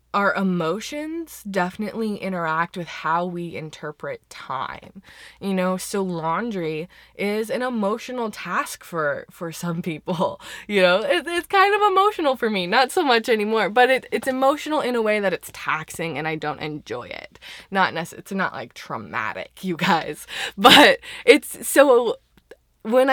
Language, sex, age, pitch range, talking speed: English, female, 20-39, 175-250 Hz, 155 wpm